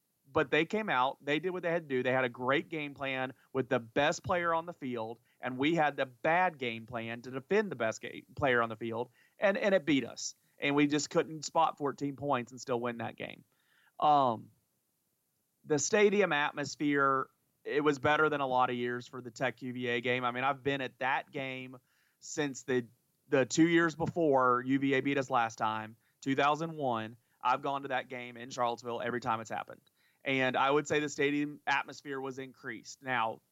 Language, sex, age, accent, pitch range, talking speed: English, male, 30-49, American, 125-165 Hz, 200 wpm